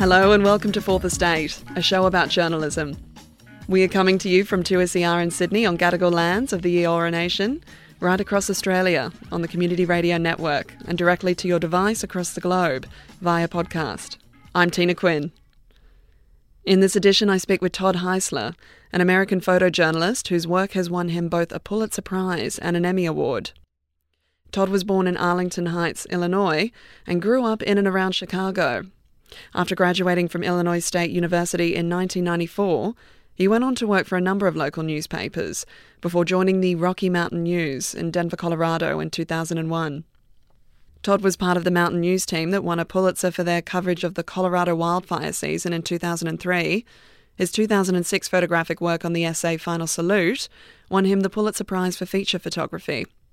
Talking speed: 175 wpm